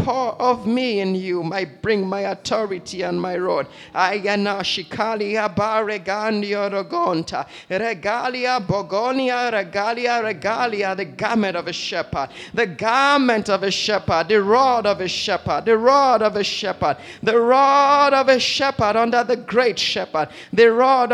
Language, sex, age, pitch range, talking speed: English, male, 30-49, 195-250 Hz, 160 wpm